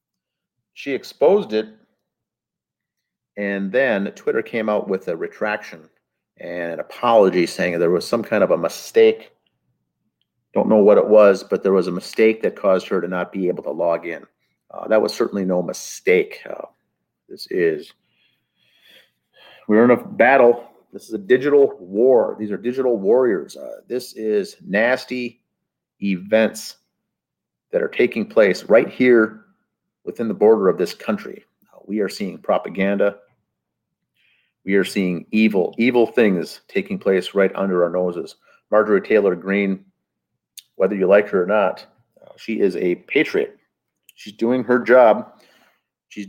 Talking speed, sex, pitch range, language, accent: 150 wpm, male, 100-150 Hz, English, American